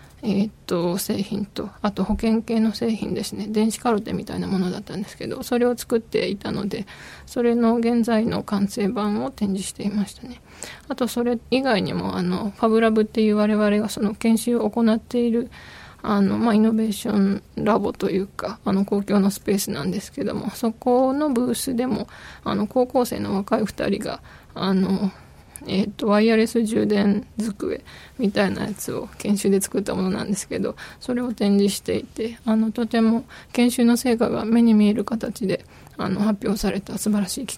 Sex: female